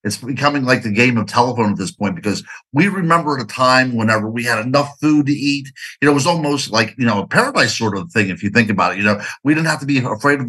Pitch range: 105-135 Hz